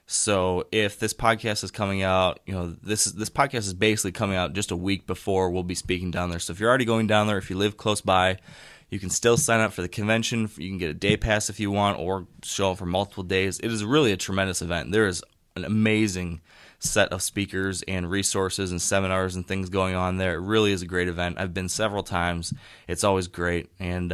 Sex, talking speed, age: male, 240 wpm, 20-39